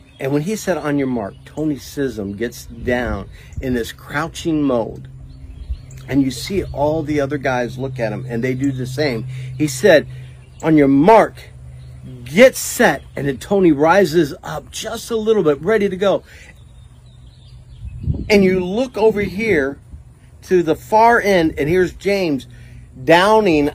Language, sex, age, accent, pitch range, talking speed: English, male, 50-69, American, 125-195 Hz, 155 wpm